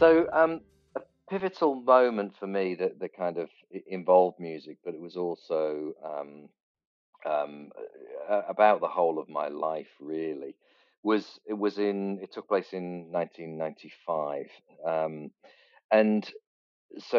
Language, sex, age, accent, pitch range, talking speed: English, male, 40-59, British, 80-100 Hz, 125 wpm